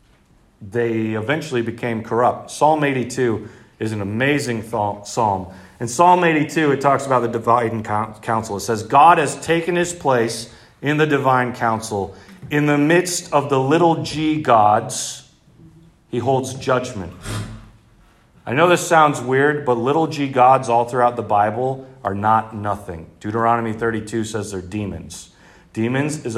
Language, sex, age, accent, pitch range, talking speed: English, male, 40-59, American, 115-170 Hz, 150 wpm